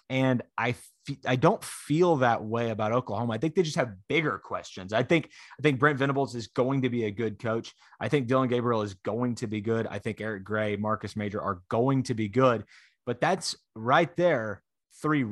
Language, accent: English, American